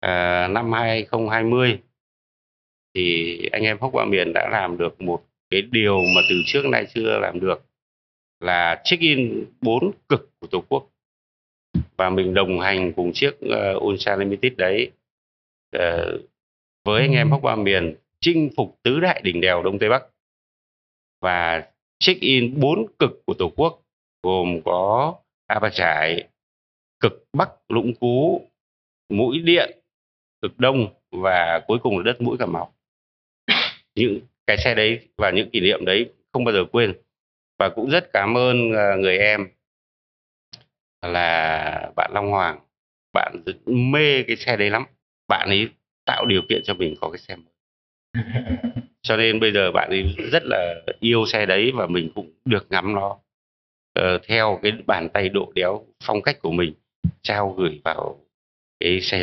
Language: Vietnamese